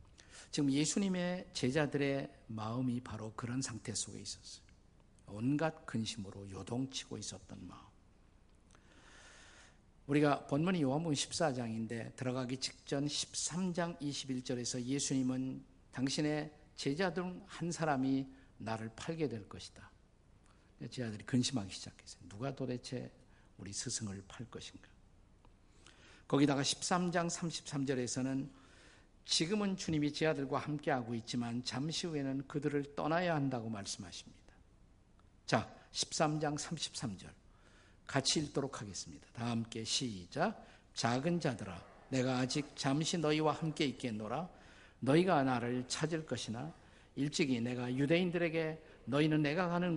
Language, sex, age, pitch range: Korean, male, 50-69, 105-150 Hz